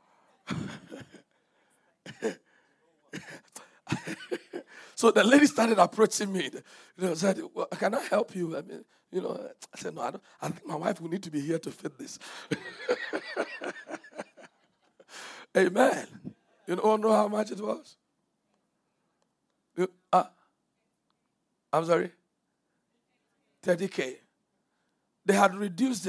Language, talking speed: English, 115 wpm